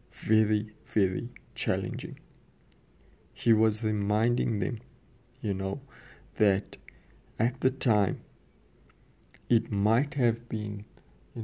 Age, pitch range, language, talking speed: 50-69, 110-135 Hz, English, 95 wpm